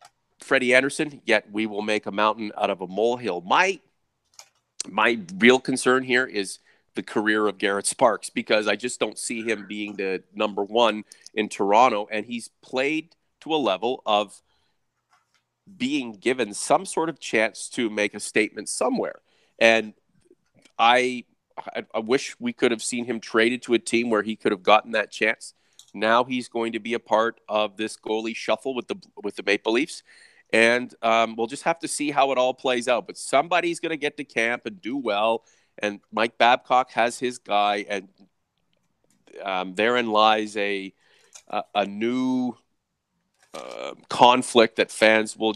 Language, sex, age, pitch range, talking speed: English, male, 30-49, 105-125 Hz, 175 wpm